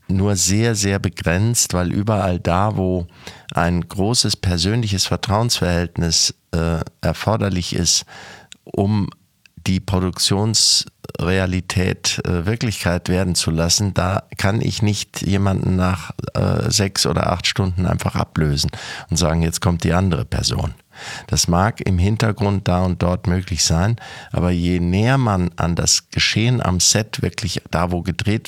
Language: German